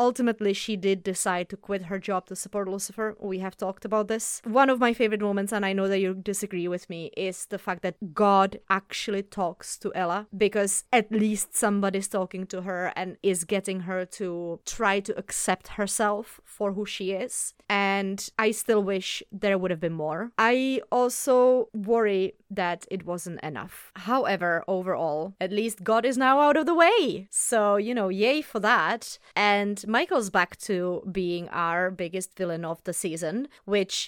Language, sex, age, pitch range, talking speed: English, female, 20-39, 190-225 Hz, 180 wpm